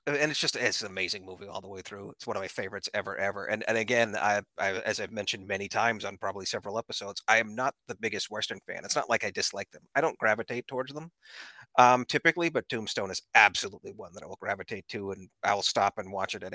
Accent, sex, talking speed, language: American, male, 255 wpm, English